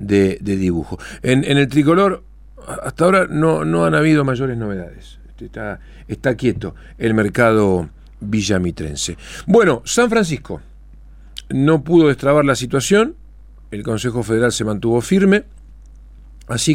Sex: male